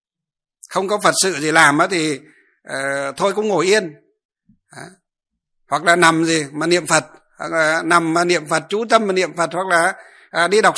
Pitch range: 145-190 Hz